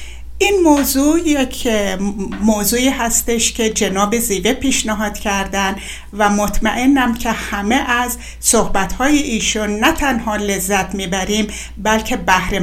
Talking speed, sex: 110 wpm, female